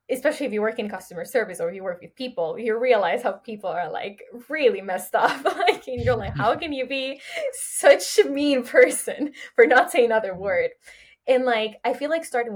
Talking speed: 205 wpm